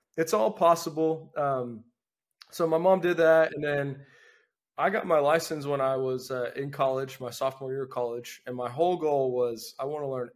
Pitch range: 125-155 Hz